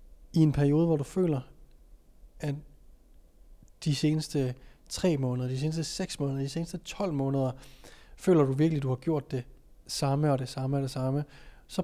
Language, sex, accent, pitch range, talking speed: Danish, male, native, 135-165 Hz, 175 wpm